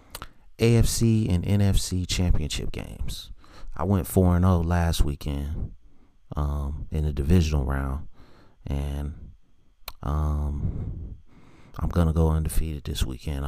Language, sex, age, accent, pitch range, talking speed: English, male, 30-49, American, 75-90 Hz, 115 wpm